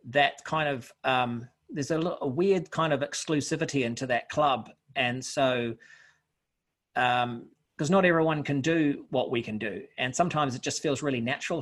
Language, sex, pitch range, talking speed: English, male, 125-150 Hz, 175 wpm